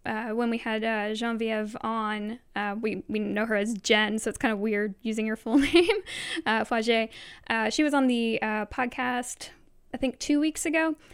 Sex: female